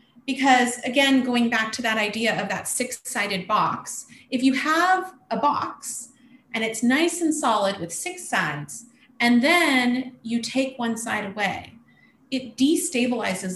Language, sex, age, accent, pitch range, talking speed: English, female, 30-49, American, 195-255 Hz, 150 wpm